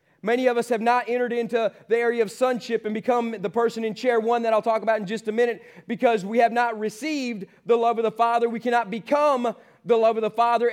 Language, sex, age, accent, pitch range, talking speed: English, male, 30-49, American, 225-245 Hz, 245 wpm